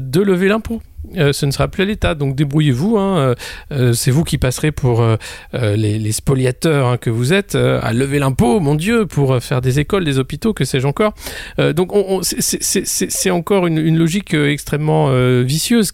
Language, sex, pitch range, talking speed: French, male, 125-170 Hz, 215 wpm